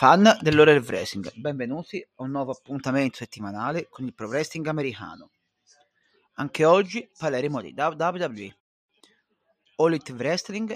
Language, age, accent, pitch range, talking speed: Italian, 30-49, native, 130-170 Hz, 125 wpm